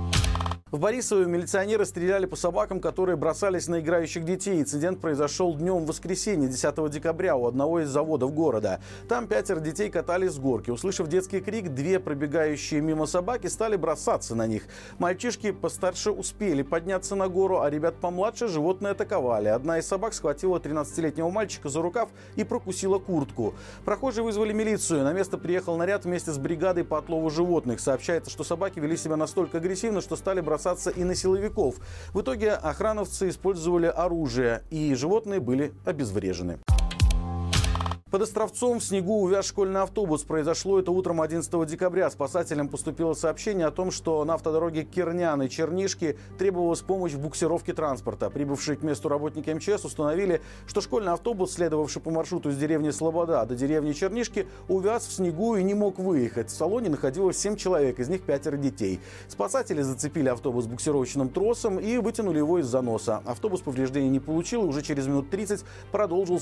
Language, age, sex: Russian, 40-59, male